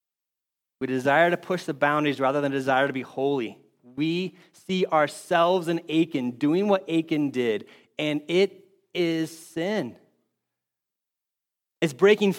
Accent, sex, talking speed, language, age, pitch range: American, male, 130 wpm, English, 30-49, 135-190 Hz